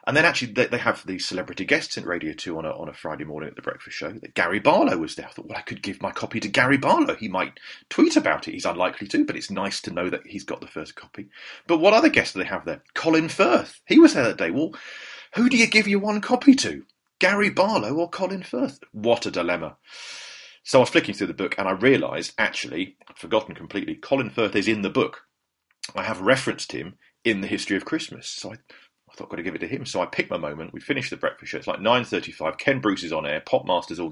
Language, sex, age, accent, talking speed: English, male, 40-59, British, 255 wpm